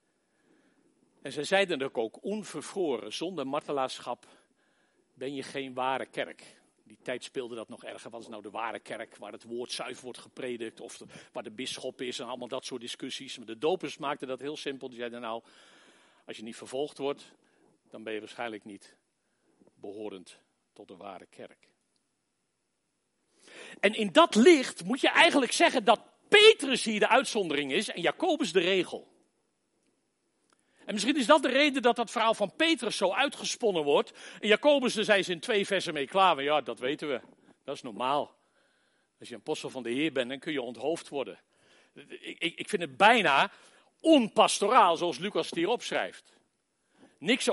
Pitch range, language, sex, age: 145-245 Hz, Dutch, male, 50-69